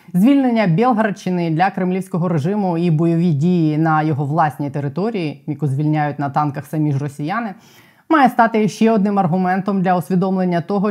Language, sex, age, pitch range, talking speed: Ukrainian, female, 20-39, 160-205 Hz, 150 wpm